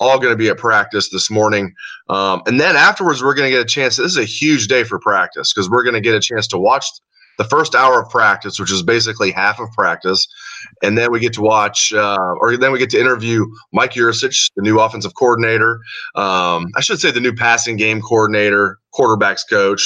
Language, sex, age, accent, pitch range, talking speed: English, male, 30-49, American, 100-115 Hz, 225 wpm